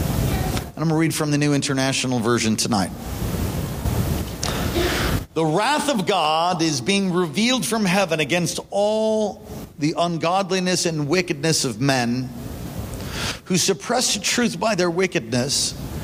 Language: English